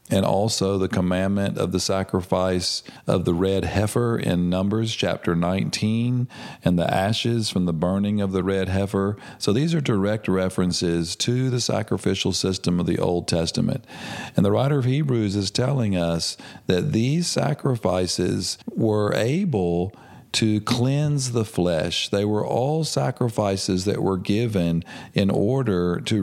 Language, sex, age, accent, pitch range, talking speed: English, male, 40-59, American, 90-115 Hz, 150 wpm